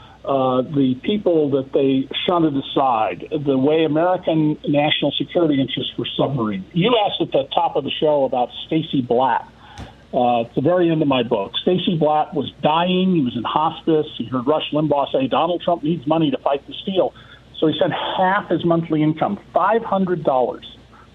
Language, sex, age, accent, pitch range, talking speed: English, male, 50-69, American, 130-175 Hz, 180 wpm